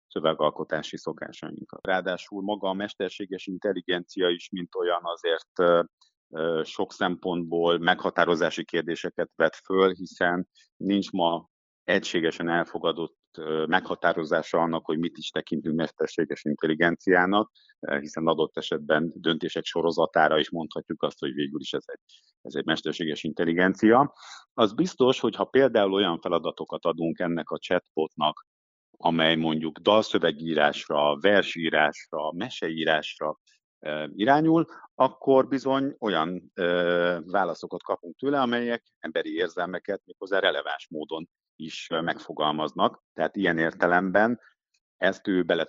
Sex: male